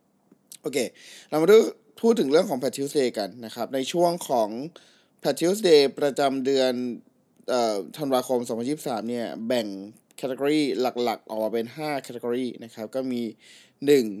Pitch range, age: 120-155 Hz, 20-39